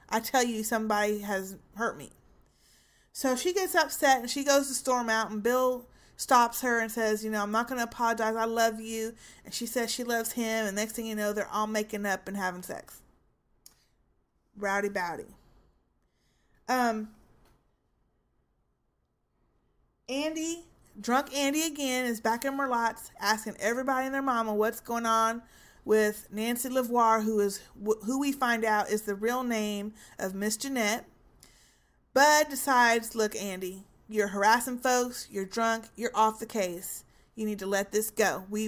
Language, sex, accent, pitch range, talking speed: English, female, American, 215-250 Hz, 160 wpm